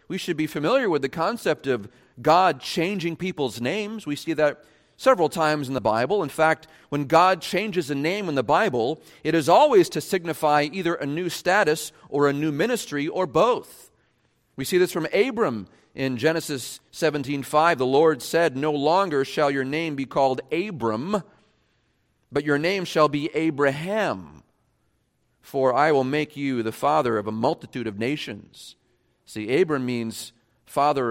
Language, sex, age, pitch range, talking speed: English, male, 40-59, 135-185 Hz, 165 wpm